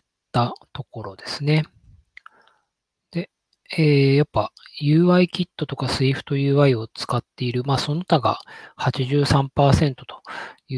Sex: male